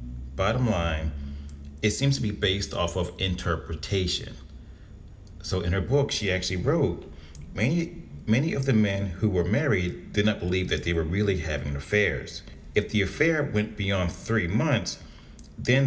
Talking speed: 160 wpm